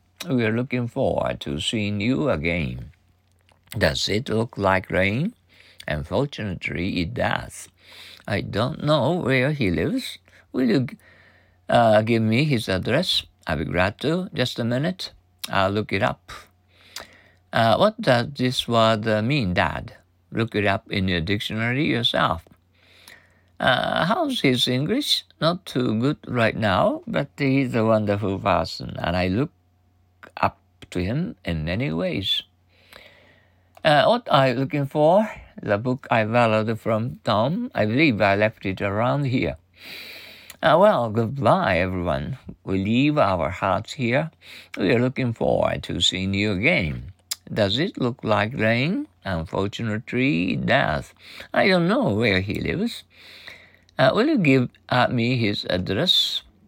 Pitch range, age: 95-130 Hz, 50-69